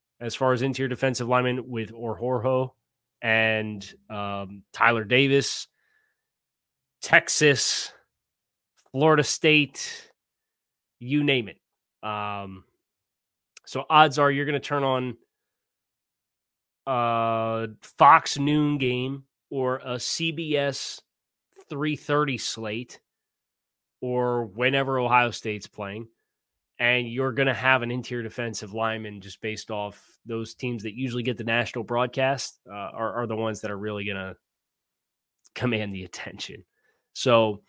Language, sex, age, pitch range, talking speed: English, male, 30-49, 110-130 Hz, 120 wpm